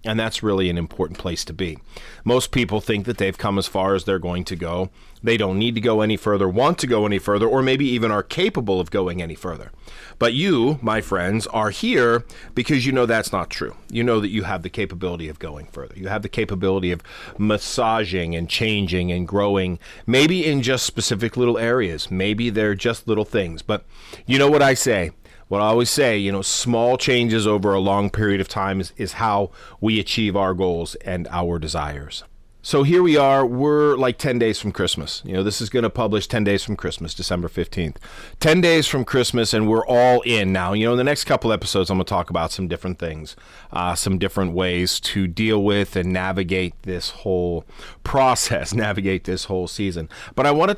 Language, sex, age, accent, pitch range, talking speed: English, male, 40-59, American, 95-120 Hz, 215 wpm